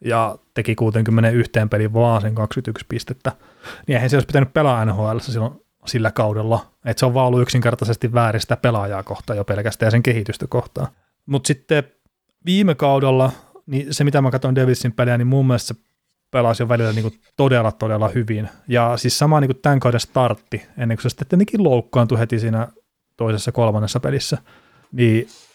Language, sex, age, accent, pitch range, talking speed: Finnish, male, 30-49, native, 115-135 Hz, 170 wpm